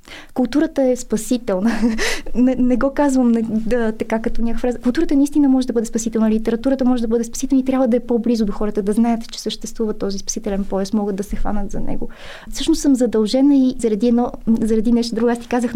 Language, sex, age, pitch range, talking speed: Bulgarian, female, 20-39, 215-250 Hz, 215 wpm